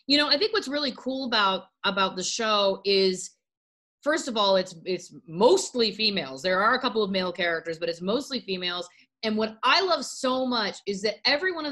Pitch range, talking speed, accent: 190-245 Hz, 210 wpm, American